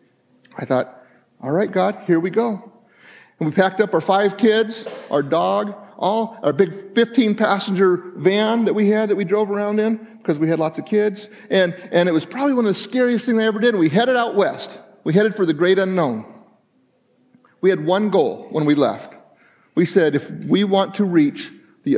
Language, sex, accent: English, male, American